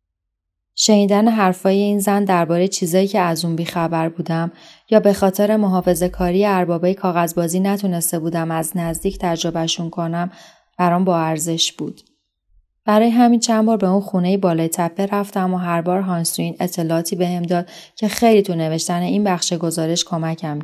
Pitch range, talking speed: 170-200 Hz, 155 wpm